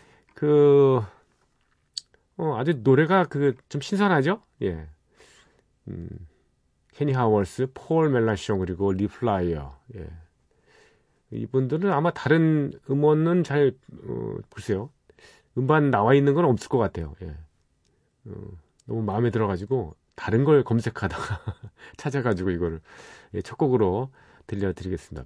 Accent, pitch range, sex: native, 95-145 Hz, male